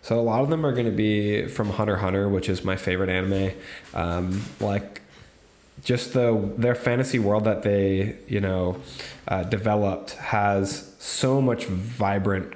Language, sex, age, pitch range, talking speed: English, male, 10-29, 95-110 Hz, 165 wpm